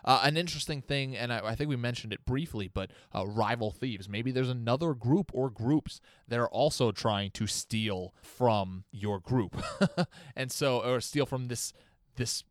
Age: 20-39